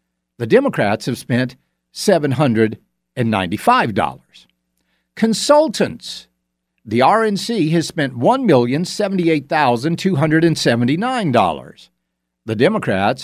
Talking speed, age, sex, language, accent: 60 wpm, 60-79, male, English, American